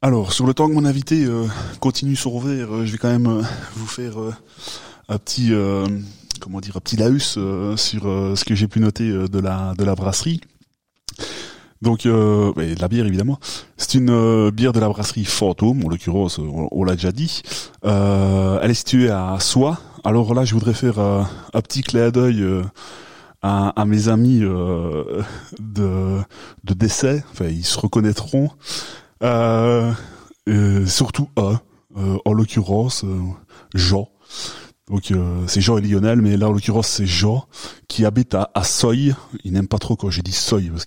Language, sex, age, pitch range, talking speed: French, male, 20-39, 100-120 Hz, 190 wpm